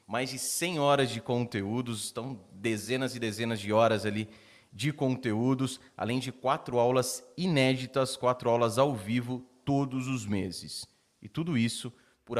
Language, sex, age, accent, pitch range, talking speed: Portuguese, male, 30-49, Brazilian, 110-130 Hz, 150 wpm